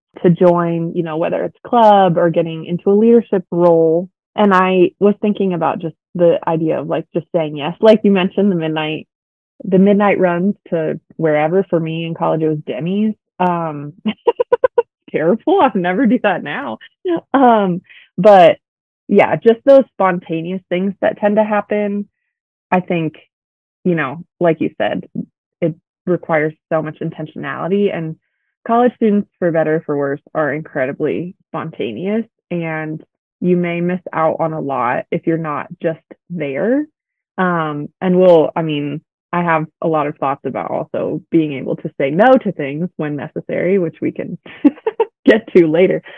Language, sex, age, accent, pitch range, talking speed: English, female, 20-39, American, 160-205 Hz, 165 wpm